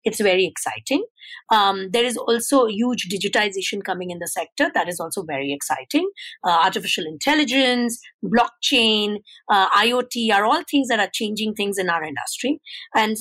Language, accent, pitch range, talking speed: English, Indian, 195-255 Hz, 160 wpm